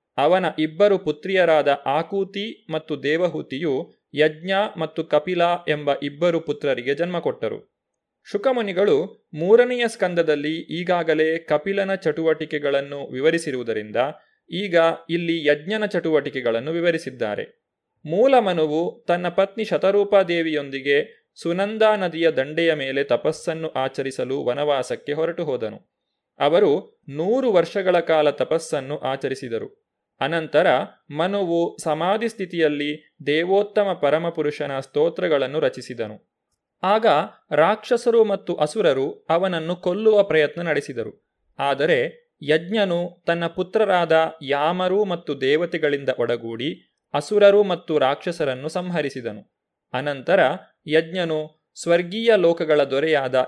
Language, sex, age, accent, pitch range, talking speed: Kannada, male, 30-49, native, 150-195 Hz, 85 wpm